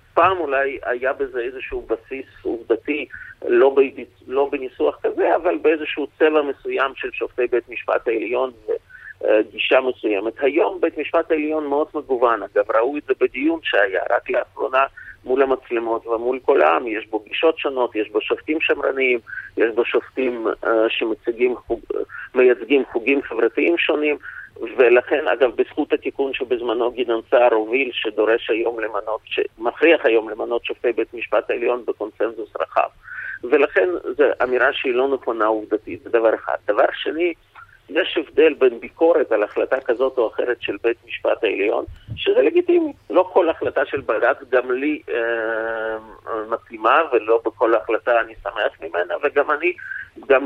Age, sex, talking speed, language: 50-69, male, 145 wpm, Hebrew